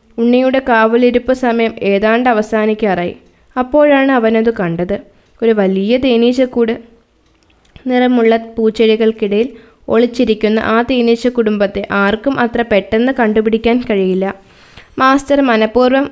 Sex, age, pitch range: female, 20-39, 215-250 Hz